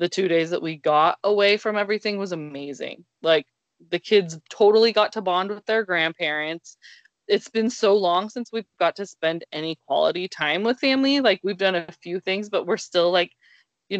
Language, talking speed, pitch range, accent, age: English, 195 wpm, 165-205 Hz, American, 20-39